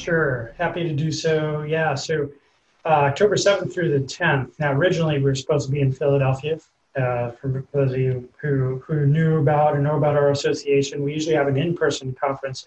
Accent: American